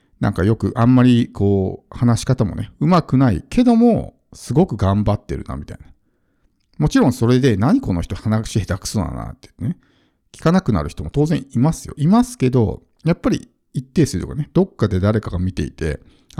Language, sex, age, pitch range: Japanese, male, 50-69, 100-130 Hz